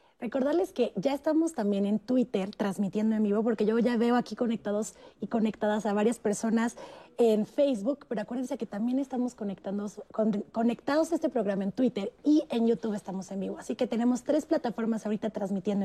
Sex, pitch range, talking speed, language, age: female, 210-250 Hz, 180 wpm, Spanish, 20-39